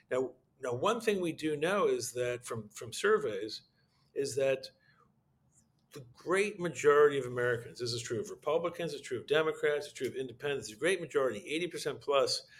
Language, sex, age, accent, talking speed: English, male, 50-69, American, 175 wpm